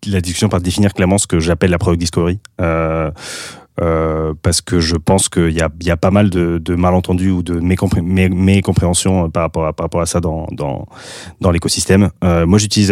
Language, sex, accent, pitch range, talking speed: French, male, French, 90-105 Hz, 220 wpm